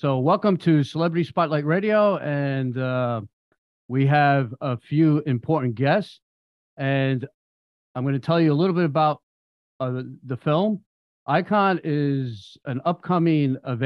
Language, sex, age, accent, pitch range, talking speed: English, male, 40-59, American, 120-165 Hz, 140 wpm